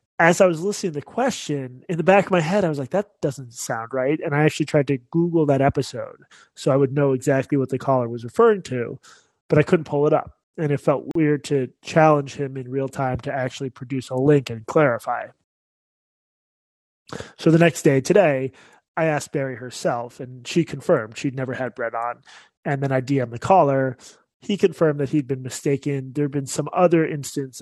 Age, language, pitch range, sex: 20-39, English, 130-160 Hz, male